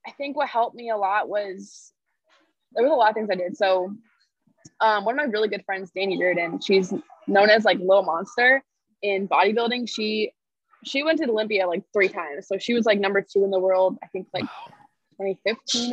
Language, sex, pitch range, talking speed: English, female, 190-230 Hz, 210 wpm